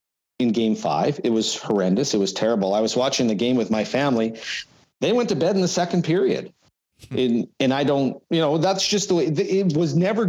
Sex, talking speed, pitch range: male, 220 wpm, 120-165 Hz